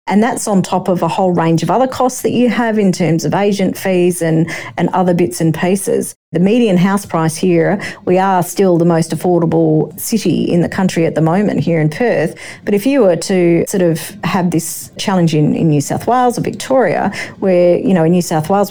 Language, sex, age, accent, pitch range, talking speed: English, female, 40-59, Australian, 165-195 Hz, 225 wpm